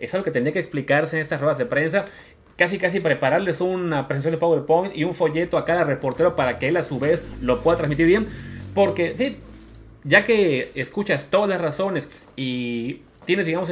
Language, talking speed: Spanish, 195 wpm